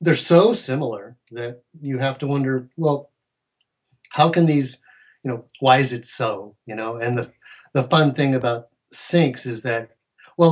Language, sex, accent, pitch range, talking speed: English, male, American, 120-145 Hz, 170 wpm